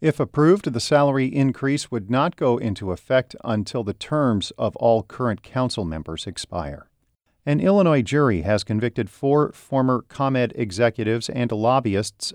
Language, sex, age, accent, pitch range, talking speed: English, male, 40-59, American, 95-120 Hz, 145 wpm